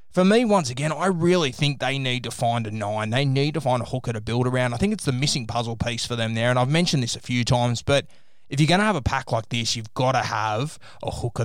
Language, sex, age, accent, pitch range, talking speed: English, male, 20-39, Australian, 115-135 Hz, 290 wpm